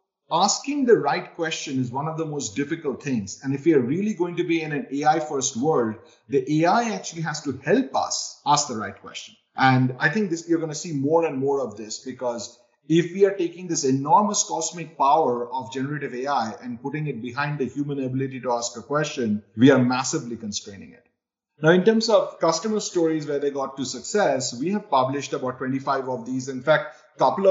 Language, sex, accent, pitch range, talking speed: English, male, Indian, 120-155 Hz, 210 wpm